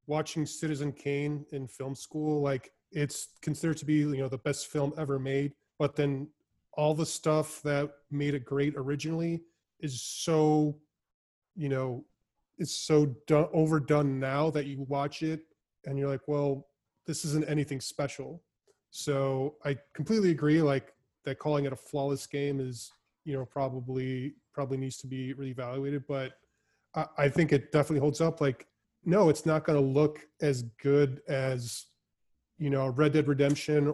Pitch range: 135-150 Hz